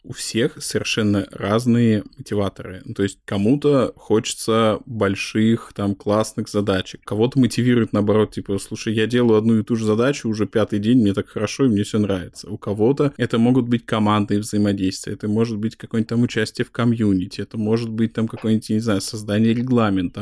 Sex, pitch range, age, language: male, 105-120 Hz, 20-39, Russian